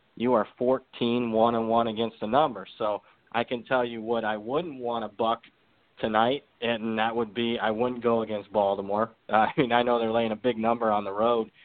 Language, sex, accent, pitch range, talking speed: English, male, American, 105-120 Hz, 215 wpm